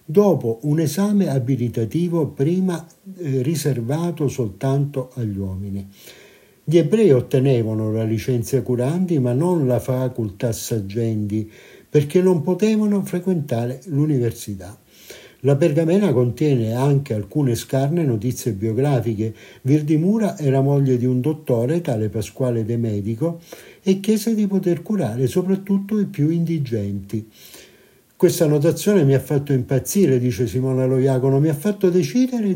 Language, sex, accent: Italian, male, native